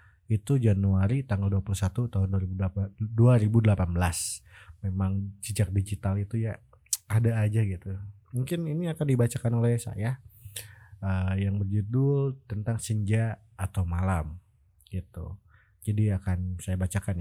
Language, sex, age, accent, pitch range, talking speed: Indonesian, male, 20-39, native, 90-105 Hz, 110 wpm